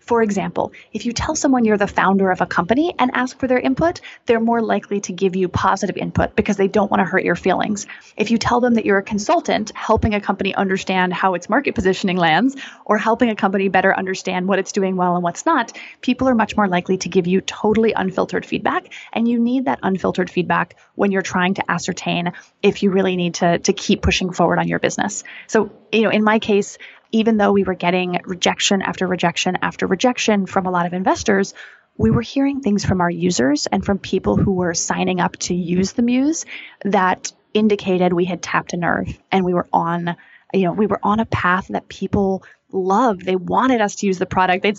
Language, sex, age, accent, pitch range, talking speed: English, female, 20-39, American, 185-235 Hz, 220 wpm